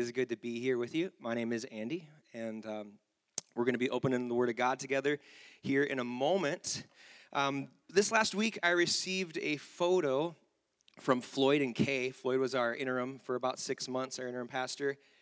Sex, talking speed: male, 200 wpm